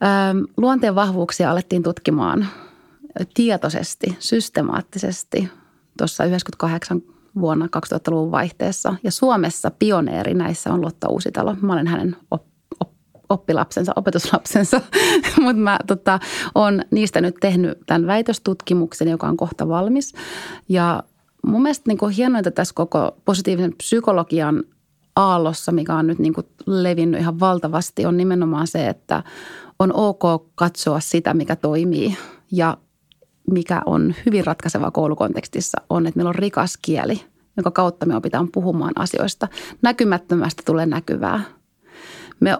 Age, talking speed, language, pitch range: 30-49, 120 wpm, Finnish, 165-195 Hz